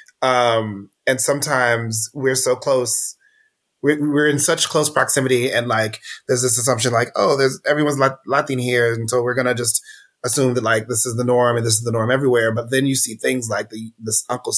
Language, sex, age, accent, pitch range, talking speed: English, male, 30-49, American, 120-150 Hz, 205 wpm